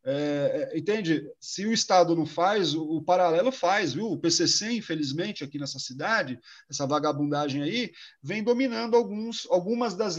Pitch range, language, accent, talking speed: 160-220 Hz, Portuguese, Brazilian, 140 wpm